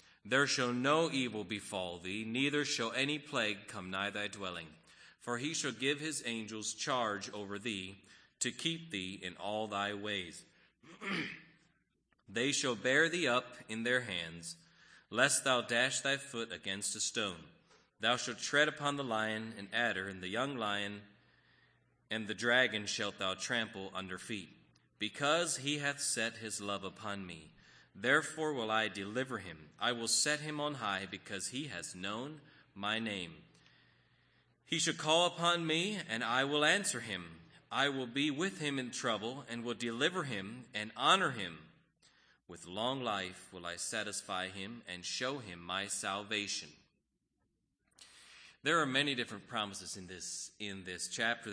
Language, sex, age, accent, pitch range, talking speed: English, male, 30-49, American, 100-135 Hz, 160 wpm